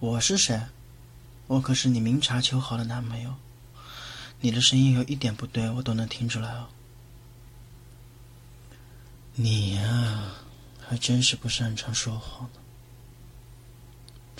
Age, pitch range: 20-39, 120-125 Hz